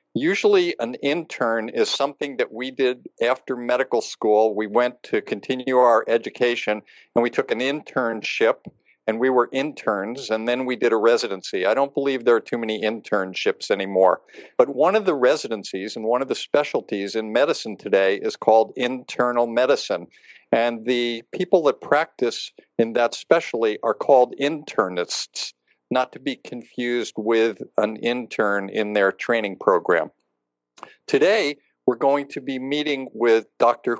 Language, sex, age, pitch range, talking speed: English, male, 50-69, 110-135 Hz, 155 wpm